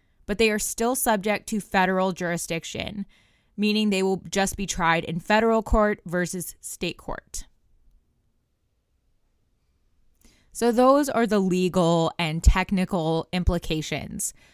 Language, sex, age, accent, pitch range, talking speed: English, female, 20-39, American, 175-220 Hz, 115 wpm